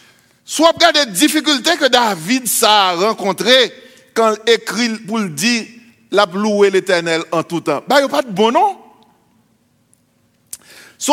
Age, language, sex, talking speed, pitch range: 60-79, English, male, 140 wpm, 225-295 Hz